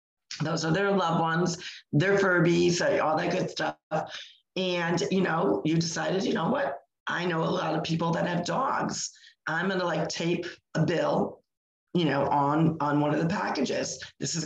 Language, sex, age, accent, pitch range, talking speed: English, female, 40-59, American, 155-180 Hz, 185 wpm